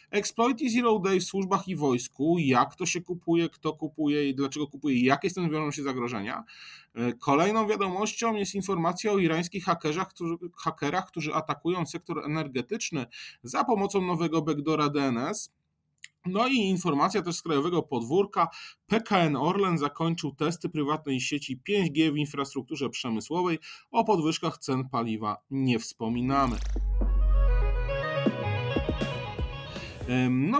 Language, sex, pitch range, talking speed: Polish, male, 140-195 Hz, 125 wpm